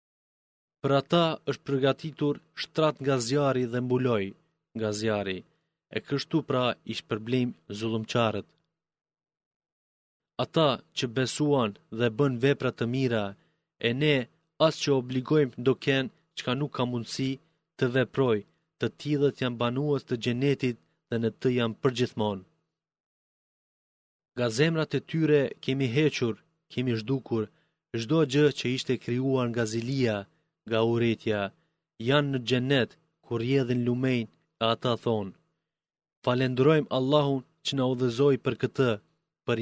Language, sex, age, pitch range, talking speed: Greek, male, 30-49, 120-150 Hz, 110 wpm